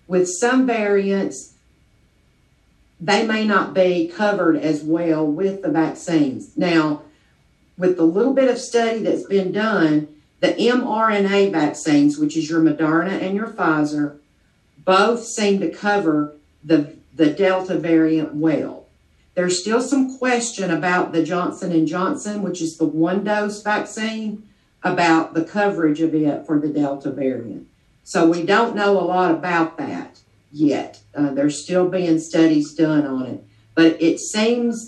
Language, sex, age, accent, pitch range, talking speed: English, female, 50-69, American, 155-205 Hz, 145 wpm